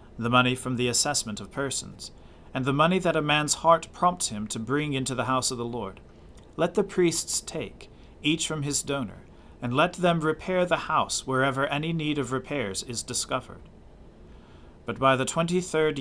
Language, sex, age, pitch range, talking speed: English, male, 40-59, 120-155 Hz, 185 wpm